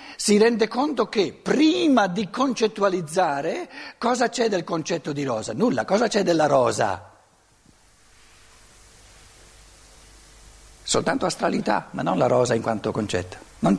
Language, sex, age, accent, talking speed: Italian, male, 60-79, native, 120 wpm